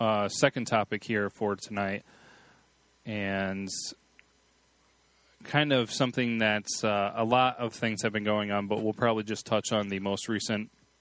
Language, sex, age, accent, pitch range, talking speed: English, male, 20-39, American, 105-120 Hz, 160 wpm